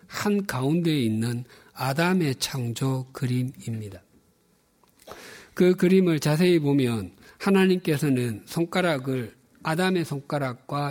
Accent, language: native, Korean